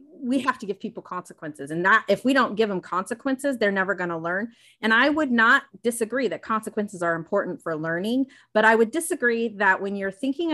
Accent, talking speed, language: American, 210 wpm, English